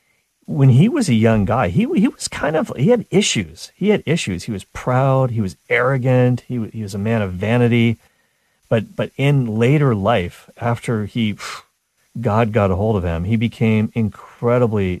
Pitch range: 100-130 Hz